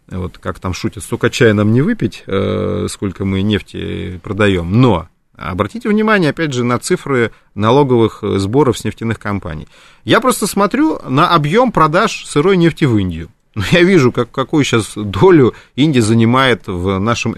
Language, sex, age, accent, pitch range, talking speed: Russian, male, 30-49, native, 105-170 Hz, 155 wpm